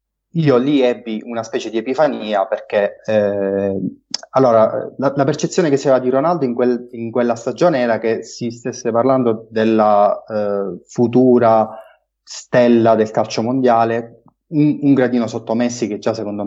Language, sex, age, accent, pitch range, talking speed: Italian, male, 20-39, native, 105-125 Hz, 145 wpm